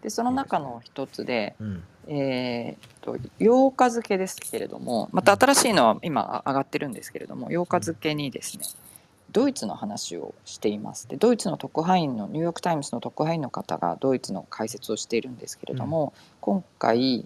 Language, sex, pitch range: Japanese, female, 120-190 Hz